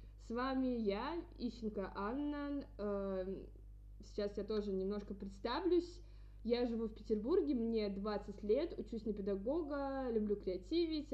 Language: Russian